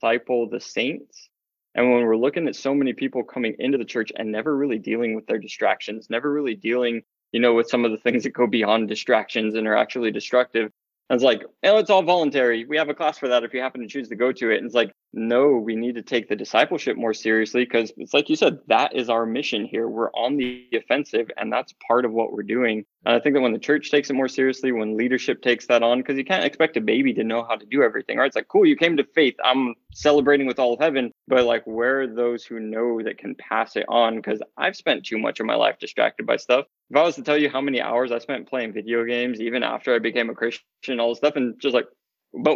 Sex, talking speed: male, 265 wpm